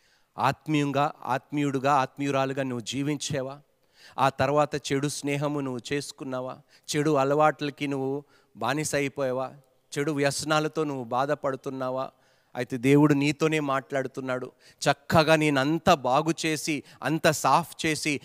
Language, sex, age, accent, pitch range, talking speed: Telugu, male, 40-59, native, 125-155 Hz, 100 wpm